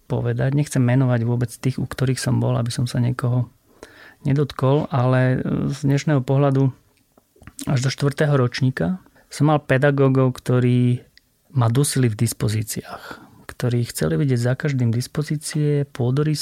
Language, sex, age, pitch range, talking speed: Slovak, male, 30-49, 120-140 Hz, 135 wpm